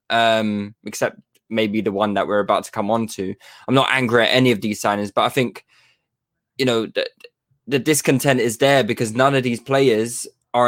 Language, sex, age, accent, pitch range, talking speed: English, male, 20-39, British, 115-155 Hz, 200 wpm